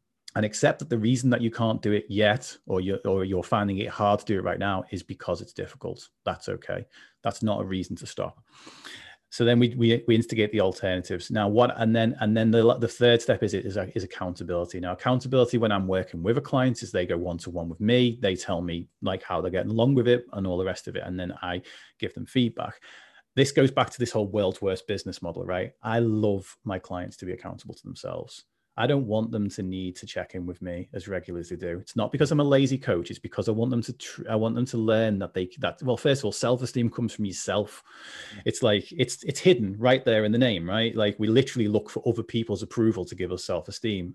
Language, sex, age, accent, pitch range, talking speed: English, male, 30-49, British, 95-120 Hz, 250 wpm